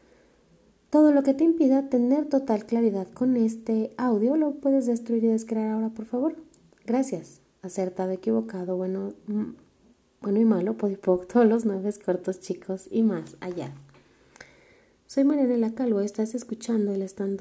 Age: 30-49